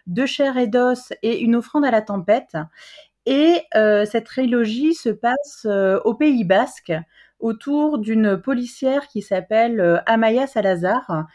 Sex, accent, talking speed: female, French, 145 wpm